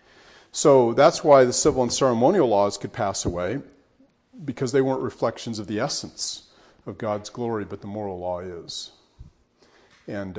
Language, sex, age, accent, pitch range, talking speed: English, male, 40-59, American, 105-135 Hz, 155 wpm